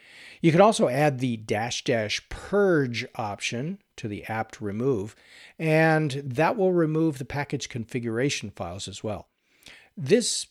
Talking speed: 135 wpm